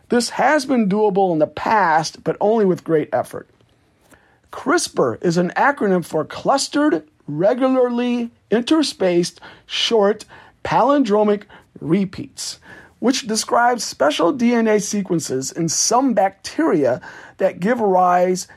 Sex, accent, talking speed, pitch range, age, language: male, American, 110 wpm, 170-225 Hz, 50-69, English